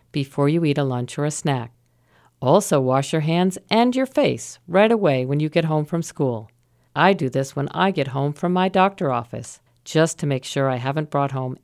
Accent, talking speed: American, 215 wpm